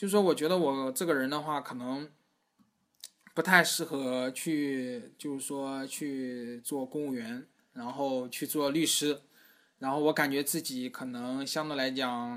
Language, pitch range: Chinese, 135-155 Hz